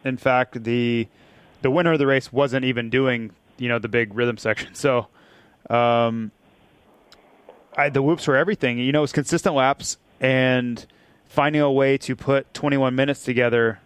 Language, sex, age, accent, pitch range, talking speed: English, male, 20-39, American, 120-135 Hz, 170 wpm